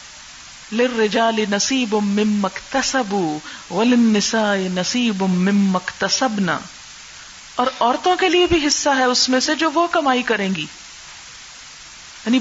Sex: female